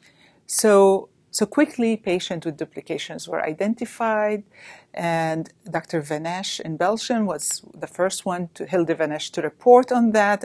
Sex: female